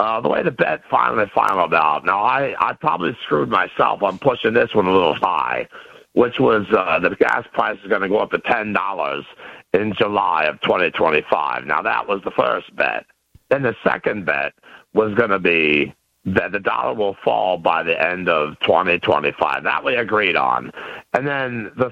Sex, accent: male, American